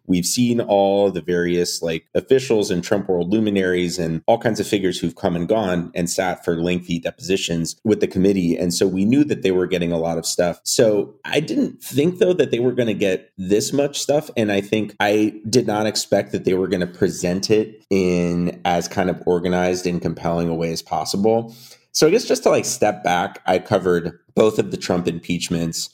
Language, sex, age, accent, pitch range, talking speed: English, male, 30-49, American, 85-105 Hz, 215 wpm